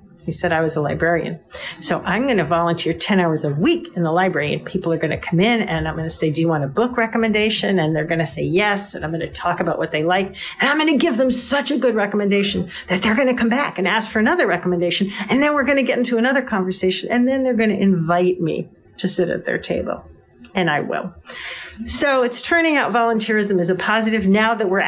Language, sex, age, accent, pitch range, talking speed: English, female, 50-69, American, 180-230 Hz, 260 wpm